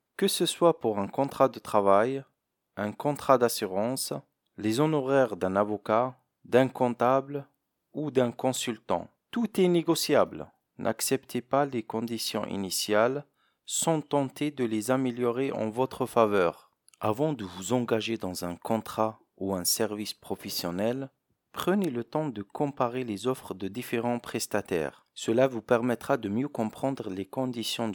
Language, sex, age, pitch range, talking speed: French, male, 40-59, 105-135 Hz, 140 wpm